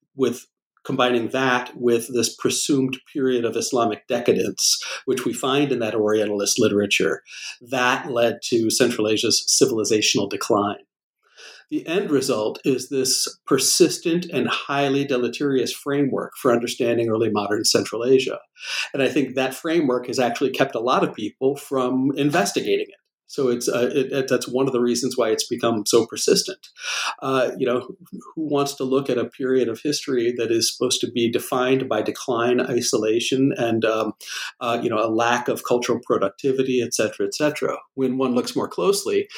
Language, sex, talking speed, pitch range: English, male, 170 wpm, 115-140 Hz